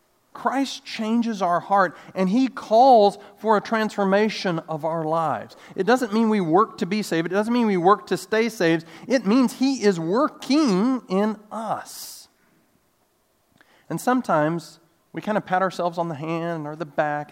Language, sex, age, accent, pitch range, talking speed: English, male, 40-59, American, 160-210 Hz, 170 wpm